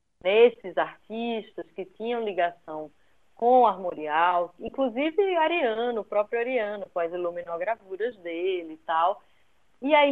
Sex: female